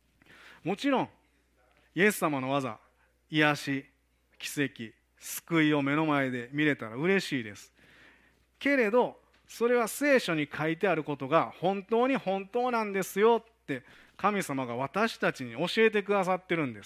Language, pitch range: Japanese, 115-175 Hz